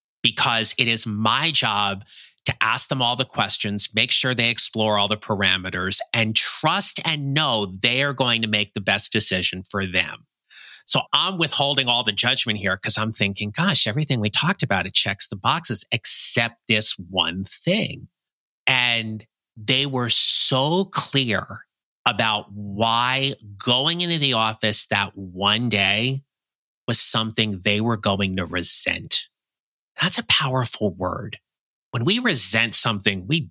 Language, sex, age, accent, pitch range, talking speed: English, male, 30-49, American, 100-130 Hz, 150 wpm